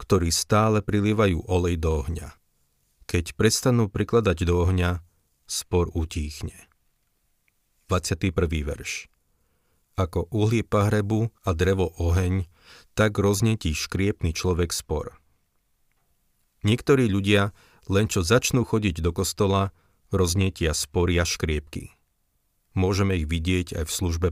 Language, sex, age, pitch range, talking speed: Slovak, male, 40-59, 80-105 Hz, 110 wpm